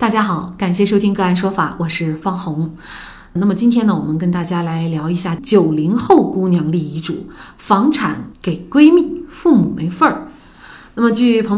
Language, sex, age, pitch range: Chinese, female, 30-49, 170-240 Hz